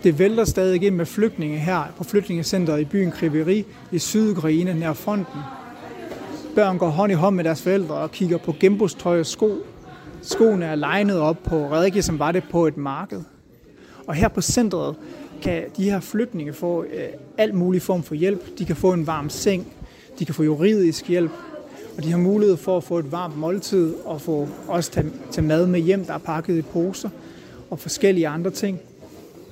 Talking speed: 190 wpm